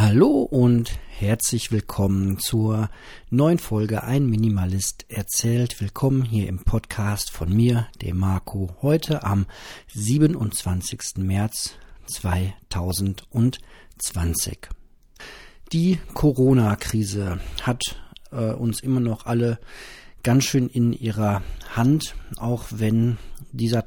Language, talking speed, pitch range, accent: German, 95 wpm, 100-120 Hz, German